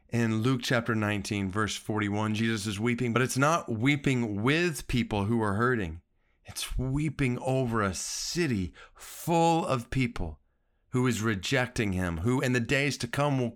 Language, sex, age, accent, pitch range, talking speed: English, male, 40-59, American, 115-150 Hz, 165 wpm